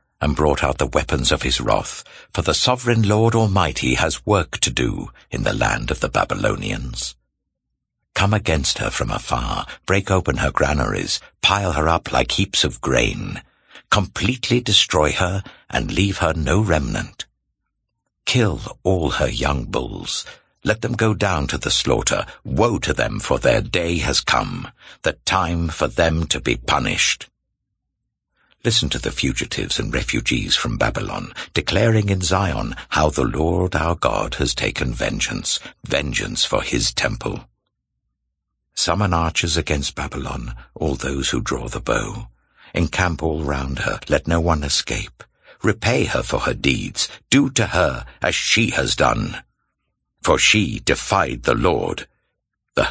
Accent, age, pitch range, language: British, 60-79, 70-100 Hz, English